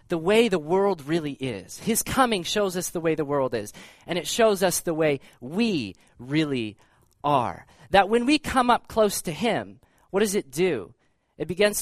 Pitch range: 145-225 Hz